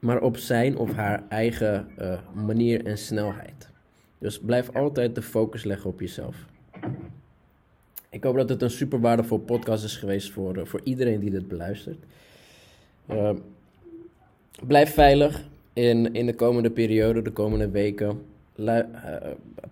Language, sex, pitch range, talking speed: Dutch, male, 105-125 Hz, 145 wpm